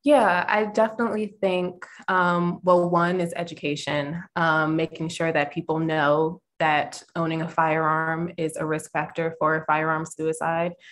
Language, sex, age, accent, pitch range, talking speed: English, female, 20-39, American, 160-185 Hz, 145 wpm